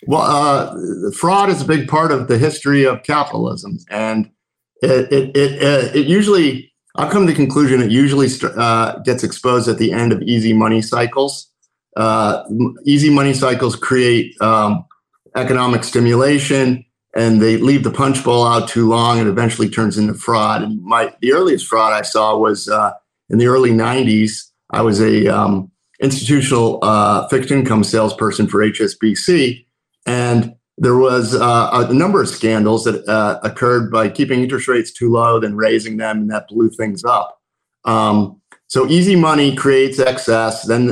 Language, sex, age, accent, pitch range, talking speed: English, male, 50-69, American, 110-130 Hz, 165 wpm